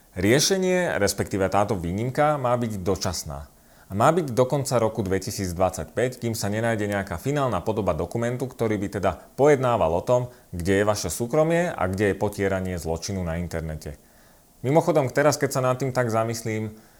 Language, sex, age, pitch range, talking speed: Slovak, male, 30-49, 90-120 Hz, 160 wpm